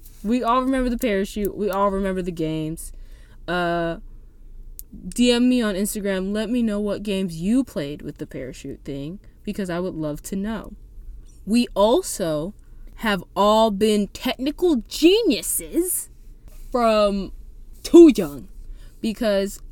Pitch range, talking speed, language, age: 170-230 Hz, 130 wpm, English, 10-29